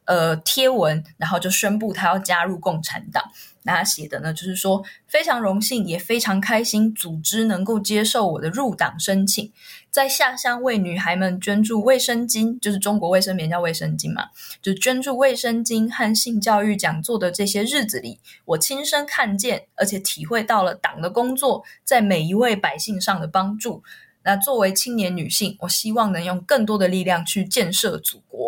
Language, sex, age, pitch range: Chinese, female, 20-39, 180-220 Hz